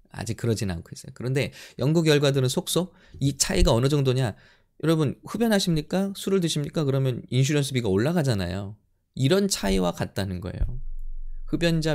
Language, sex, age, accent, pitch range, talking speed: English, male, 20-39, Korean, 100-150 Hz, 120 wpm